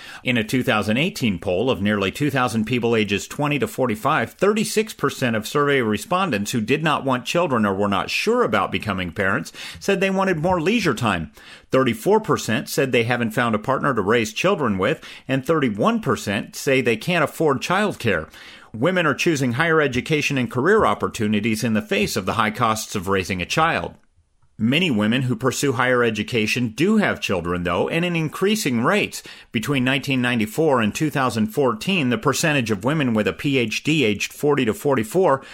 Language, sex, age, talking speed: English, male, 40-59, 170 wpm